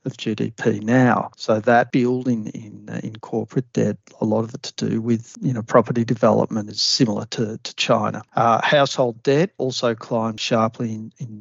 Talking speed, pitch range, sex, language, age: 185 wpm, 115-140 Hz, male, English, 50-69